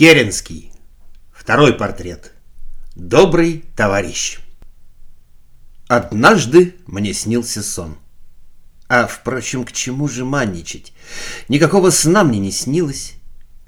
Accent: native